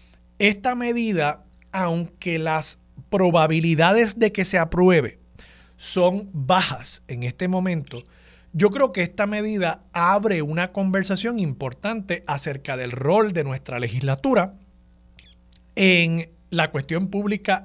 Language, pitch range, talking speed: Spanish, 125-190 Hz, 110 wpm